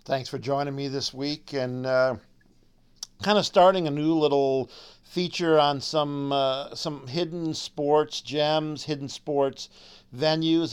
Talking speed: 140 wpm